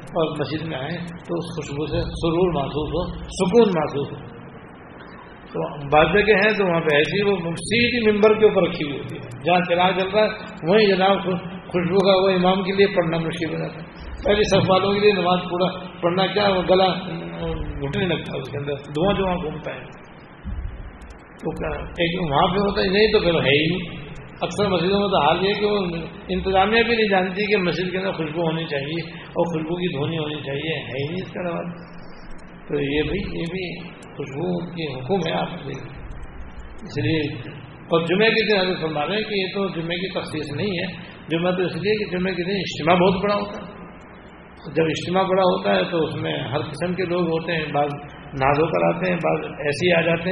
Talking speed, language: 200 wpm, Urdu